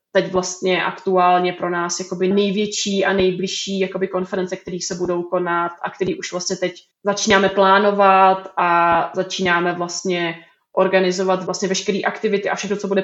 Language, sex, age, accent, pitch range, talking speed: Czech, female, 20-39, native, 180-195 Hz, 150 wpm